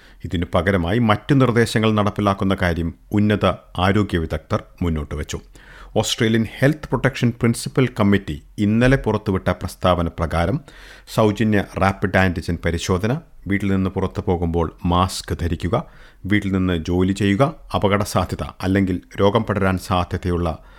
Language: Malayalam